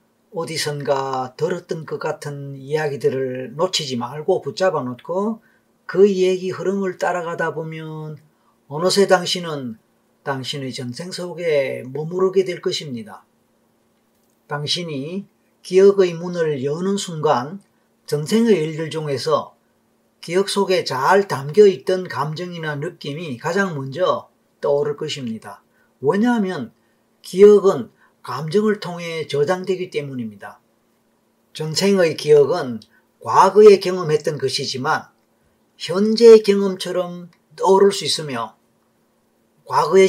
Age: 40-59